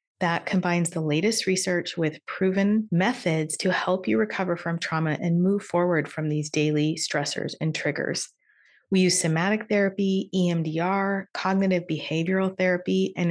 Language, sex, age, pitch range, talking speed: English, female, 30-49, 160-195 Hz, 145 wpm